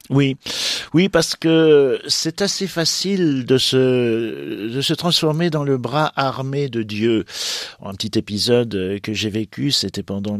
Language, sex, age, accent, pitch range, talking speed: French, male, 50-69, French, 100-145 Hz, 150 wpm